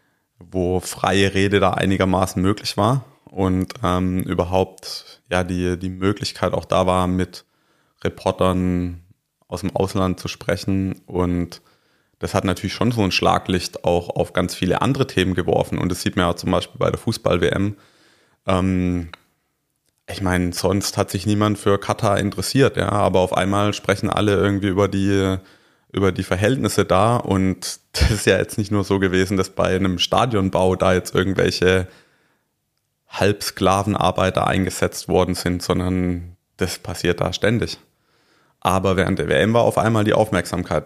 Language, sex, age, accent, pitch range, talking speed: German, male, 20-39, German, 90-100 Hz, 155 wpm